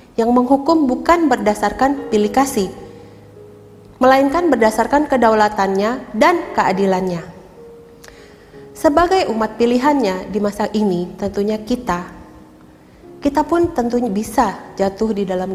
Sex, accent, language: female, native, Indonesian